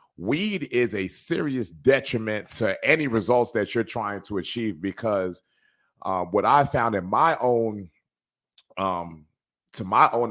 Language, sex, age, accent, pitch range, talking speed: English, male, 30-49, American, 95-120 Hz, 145 wpm